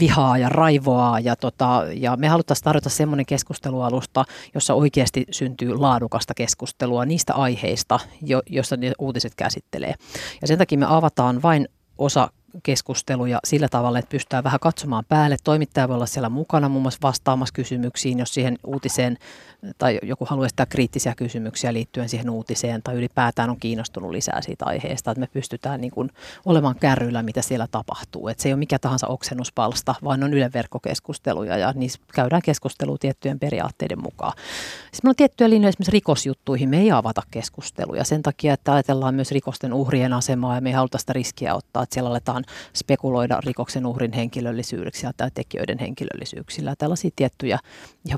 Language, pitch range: Finnish, 120-140 Hz